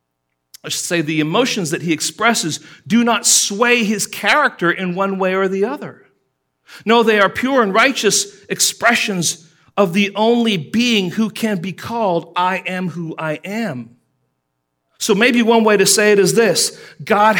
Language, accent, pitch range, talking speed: English, American, 115-185 Hz, 170 wpm